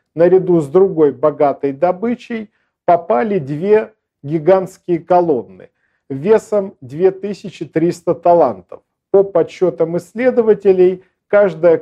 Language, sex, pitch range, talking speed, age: Russian, male, 150-185 Hz, 80 wpm, 50-69